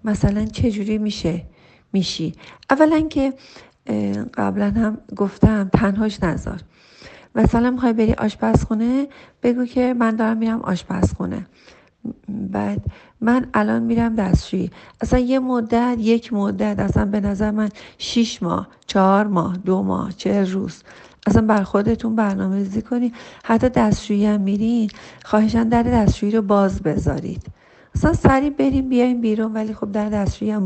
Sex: female